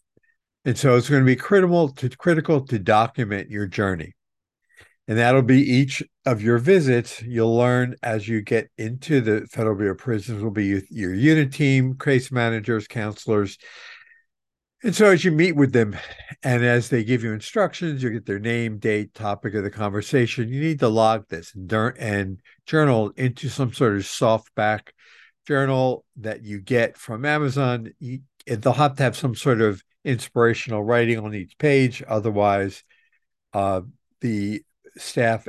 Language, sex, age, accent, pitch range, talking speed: English, male, 50-69, American, 110-140 Hz, 155 wpm